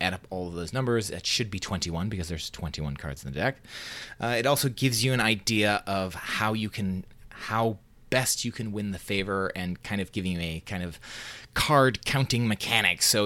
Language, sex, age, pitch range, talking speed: English, male, 30-49, 95-120 Hz, 215 wpm